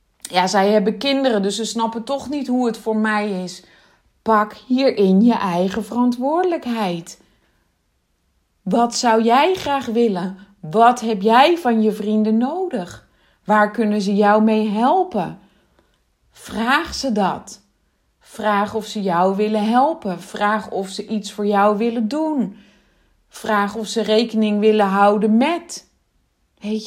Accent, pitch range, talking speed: Dutch, 195-235 Hz, 140 wpm